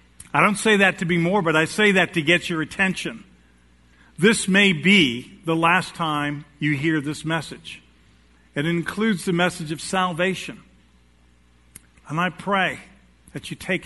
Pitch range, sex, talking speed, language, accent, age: 130-180 Hz, male, 160 wpm, English, American, 50-69